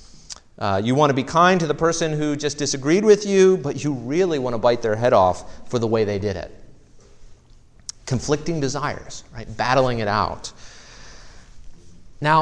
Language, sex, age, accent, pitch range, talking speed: English, male, 30-49, American, 110-145 Hz, 175 wpm